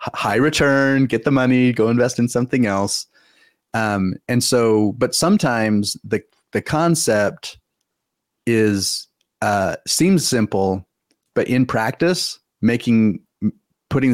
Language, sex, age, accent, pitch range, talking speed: English, male, 30-49, American, 100-120 Hz, 115 wpm